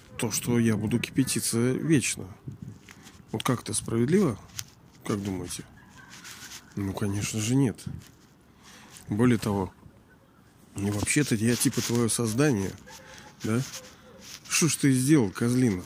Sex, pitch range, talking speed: male, 105-130 Hz, 110 wpm